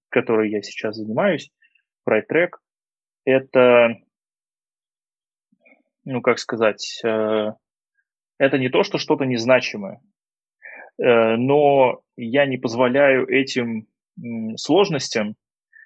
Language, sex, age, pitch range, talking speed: Russian, male, 20-39, 110-130 Hz, 90 wpm